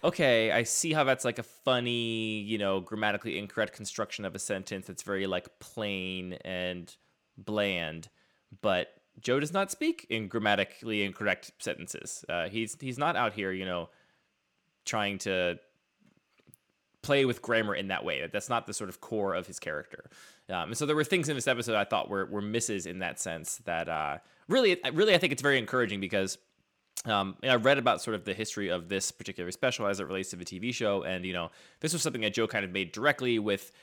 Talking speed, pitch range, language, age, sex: 205 wpm, 95-120 Hz, English, 20-39, male